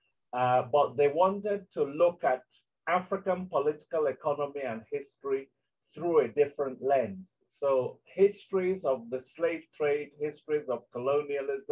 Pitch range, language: 130-185 Hz, English